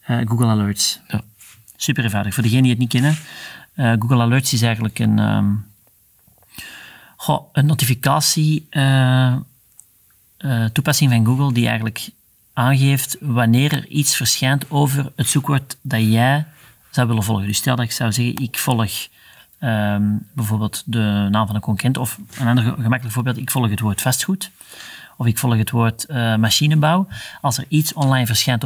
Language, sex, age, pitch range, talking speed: Dutch, male, 40-59, 115-140 Hz, 165 wpm